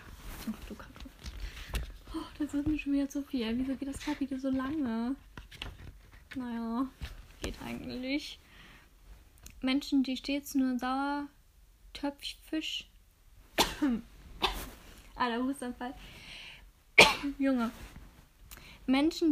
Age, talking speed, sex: 10-29, 105 wpm, female